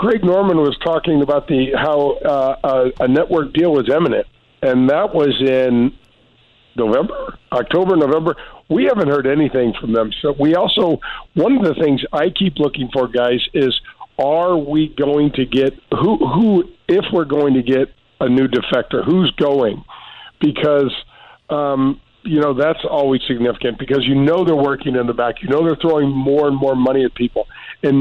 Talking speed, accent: 180 wpm, American